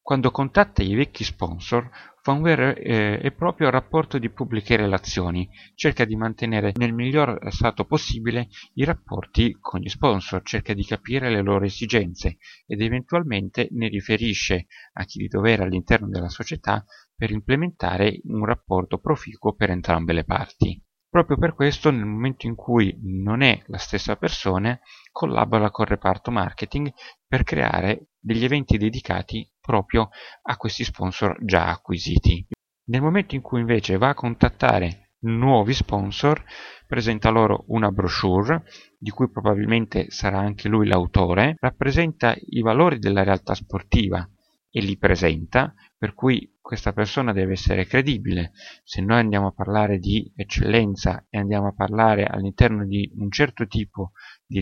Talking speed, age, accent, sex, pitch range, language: 145 wpm, 30-49, native, male, 100-120 Hz, Italian